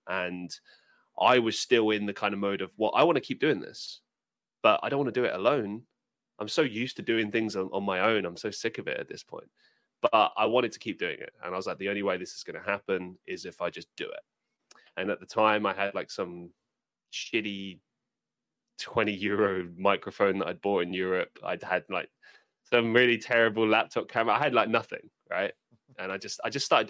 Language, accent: English, British